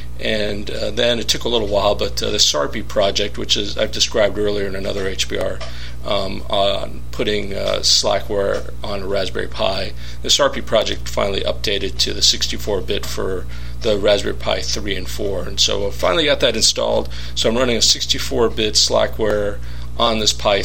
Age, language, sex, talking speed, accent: 40-59, English, male, 185 wpm, American